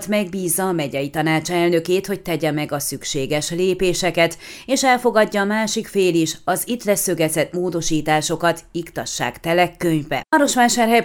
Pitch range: 155-195 Hz